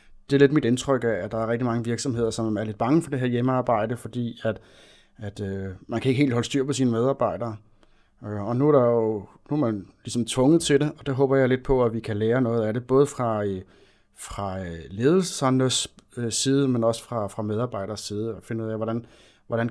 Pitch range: 105-125 Hz